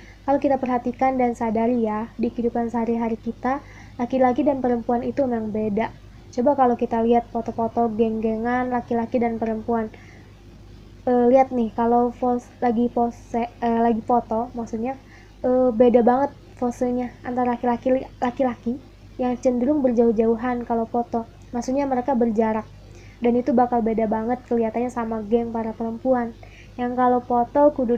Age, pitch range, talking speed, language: 20-39, 230-255 Hz, 140 wpm, Indonesian